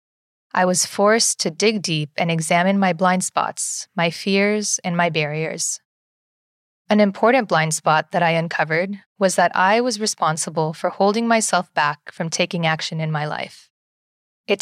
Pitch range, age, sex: 160-205 Hz, 20-39, female